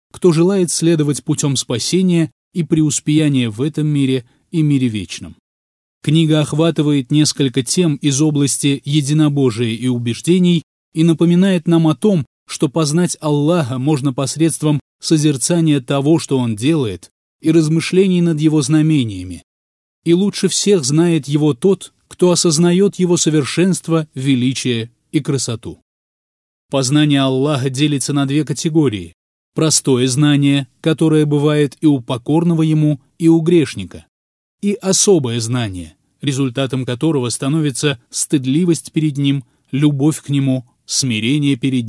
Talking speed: 125 wpm